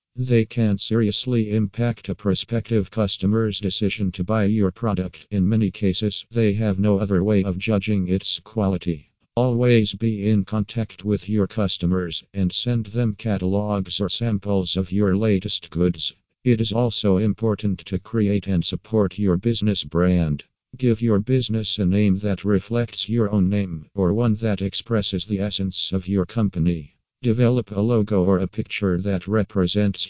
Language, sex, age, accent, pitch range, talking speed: Portuguese, male, 50-69, American, 95-110 Hz, 160 wpm